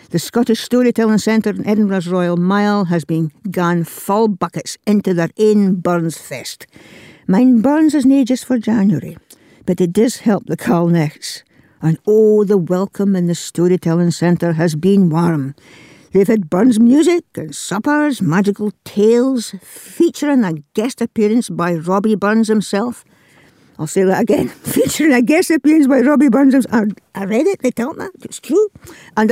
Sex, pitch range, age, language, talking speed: female, 170-235 Hz, 60-79, English, 160 wpm